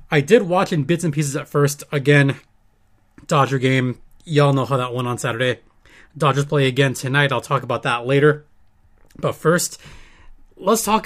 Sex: male